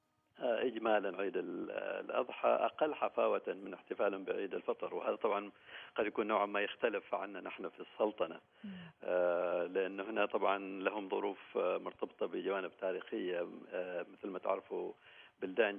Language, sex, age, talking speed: Arabic, male, 50-69, 120 wpm